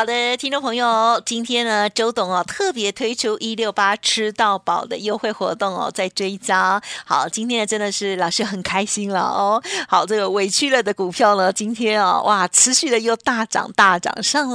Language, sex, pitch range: Chinese, female, 195-250 Hz